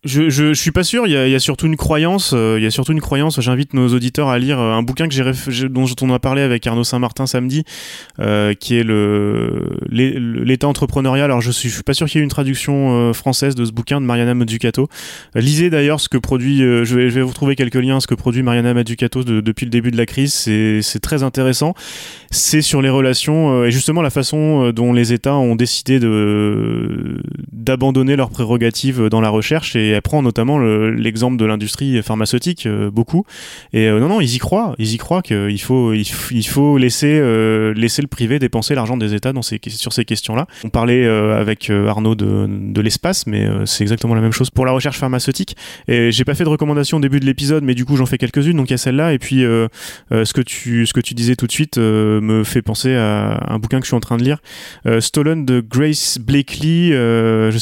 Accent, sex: French, male